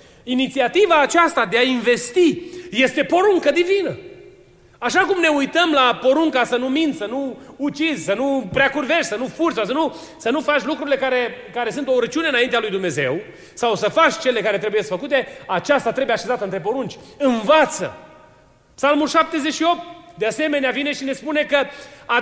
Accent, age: native, 30-49